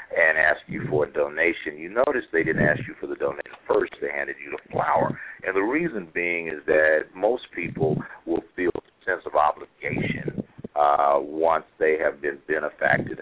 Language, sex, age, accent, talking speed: English, male, 50-69, American, 185 wpm